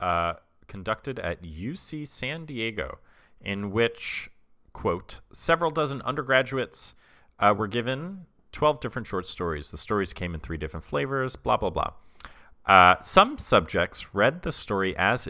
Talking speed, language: 140 wpm, English